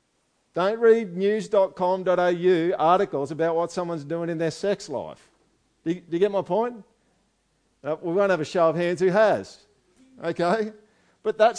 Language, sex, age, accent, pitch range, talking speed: English, male, 50-69, Australian, 140-185 Hz, 155 wpm